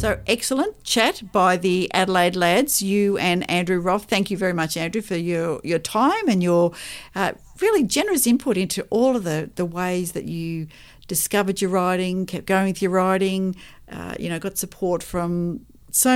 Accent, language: Australian, English